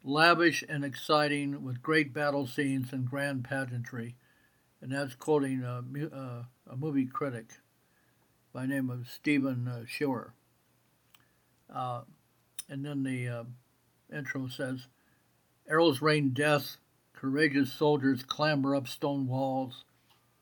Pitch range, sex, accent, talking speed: 130-145 Hz, male, American, 115 wpm